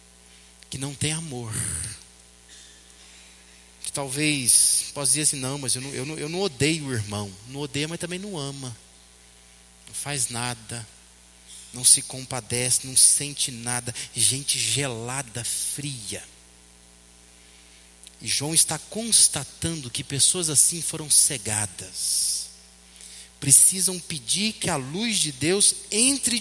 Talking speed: 120 wpm